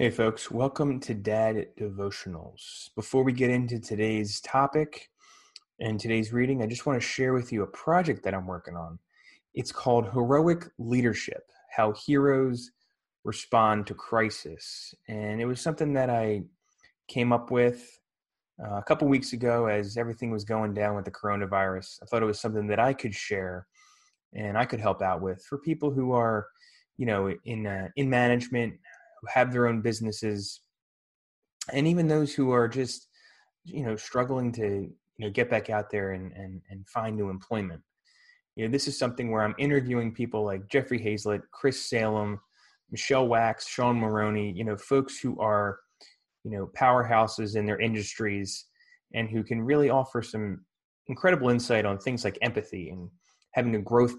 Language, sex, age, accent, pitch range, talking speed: English, male, 20-39, American, 105-130 Hz, 170 wpm